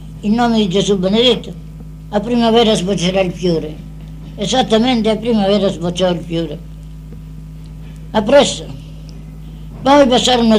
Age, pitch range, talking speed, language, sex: 60-79, 165-220 Hz, 115 wpm, Italian, female